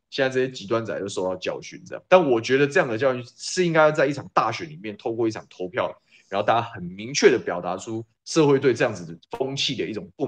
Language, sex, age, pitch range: Chinese, male, 20-39, 100-140 Hz